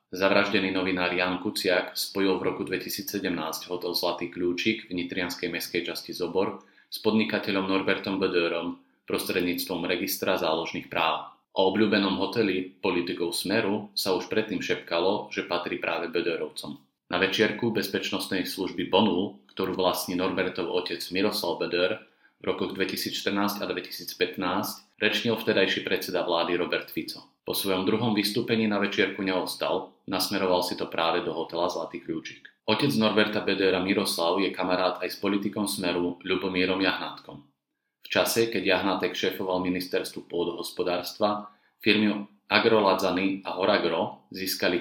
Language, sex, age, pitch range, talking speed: Slovak, male, 30-49, 90-105 Hz, 135 wpm